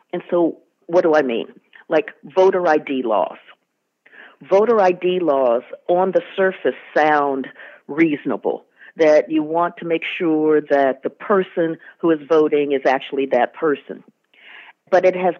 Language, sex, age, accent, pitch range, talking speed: English, female, 50-69, American, 155-190 Hz, 145 wpm